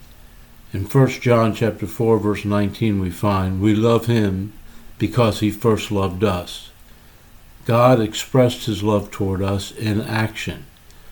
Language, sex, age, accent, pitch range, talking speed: English, male, 60-79, American, 100-115 Hz, 135 wpm